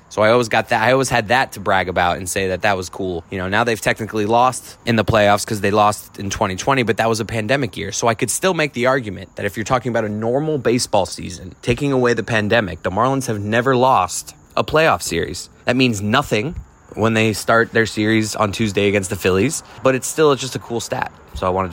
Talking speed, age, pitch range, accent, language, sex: 245 wpm, 20-39, 100-130 Hz, American, English, male